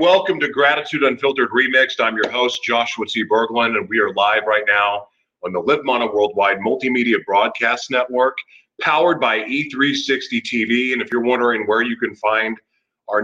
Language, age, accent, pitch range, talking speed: English, 30-49, American, 110-150 Hz, 170 wpm